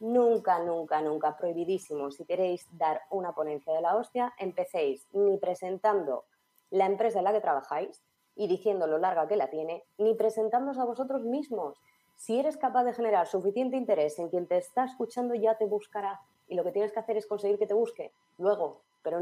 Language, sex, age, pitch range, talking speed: Spanish, female, 20-39, 165-220 Hz, 190 wpm